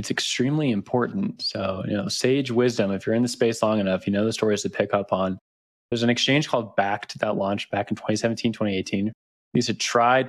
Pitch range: 100-120 Hz